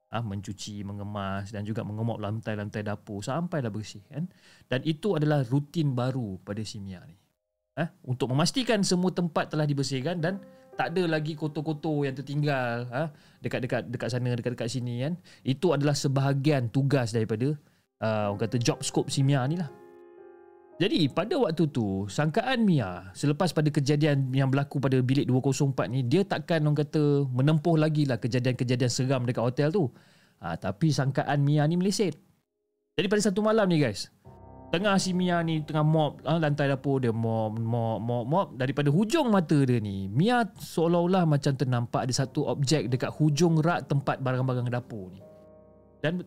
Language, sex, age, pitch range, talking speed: Malay, male, 30-49, 120-165 Hz, 165 wpm